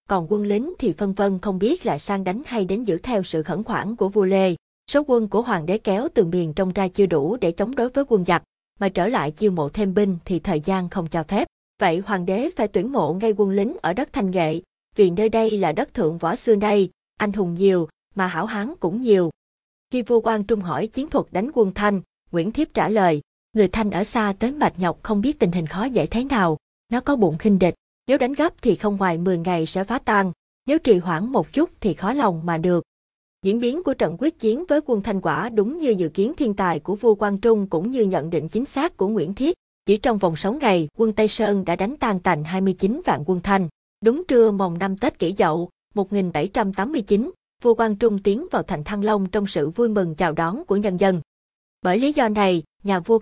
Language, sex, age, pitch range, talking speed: Vietnamese, female, 20-39, 185-230 Hz, 240 wpm